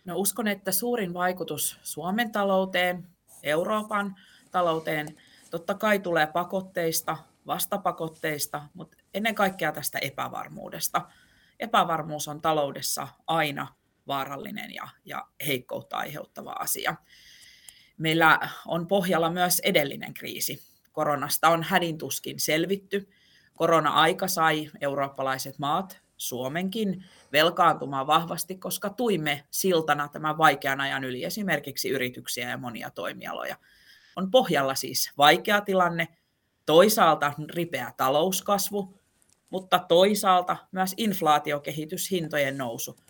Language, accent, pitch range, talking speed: Finnish, native, 150-185 Hz, 100 wpm